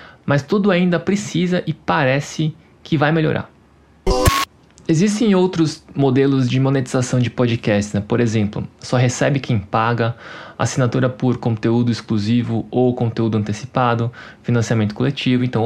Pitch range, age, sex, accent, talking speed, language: 120-155 Hz, 20-39, male, Brazilian, 125 wpm, Portuguese